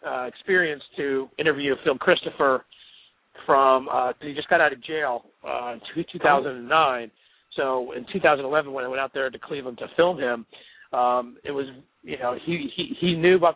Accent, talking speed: American, 195 wpm